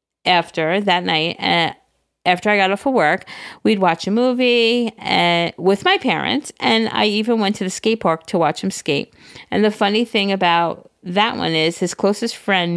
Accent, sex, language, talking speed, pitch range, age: American, female, English, 190 wpm, 170-225 Hz, 40-59